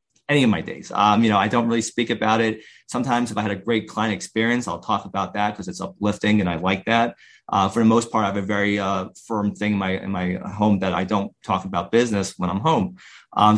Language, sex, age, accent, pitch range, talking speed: English, male, 30-49, American, 105-120 Hz, 260 wpm